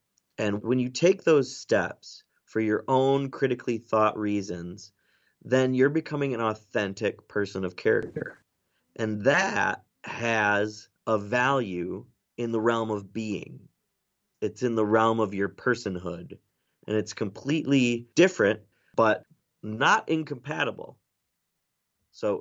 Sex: male